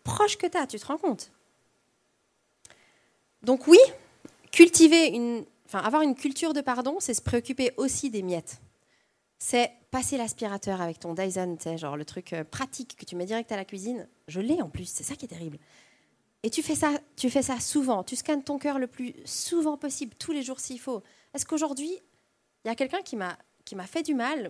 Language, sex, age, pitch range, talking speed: French, female, 30-49, 200-305 Hz, 205 wpm